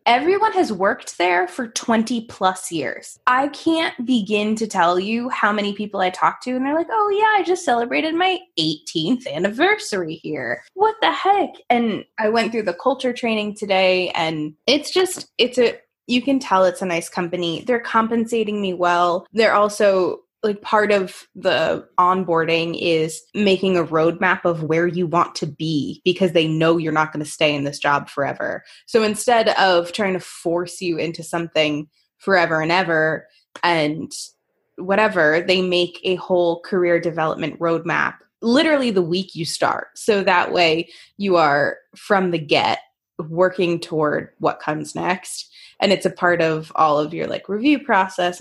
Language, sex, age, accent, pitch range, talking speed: English, female, 20-39, American, 170-235 Hz, 170 wpm